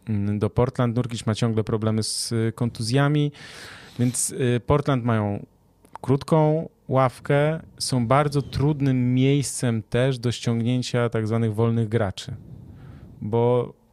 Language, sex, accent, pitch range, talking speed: Polish, male, native, 110-125 Hz, 105 wpm